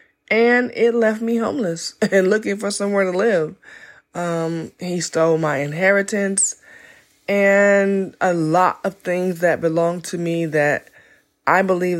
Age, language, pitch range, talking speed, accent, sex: 20-39, English, 150-190 Hz, 140 wpm, American, female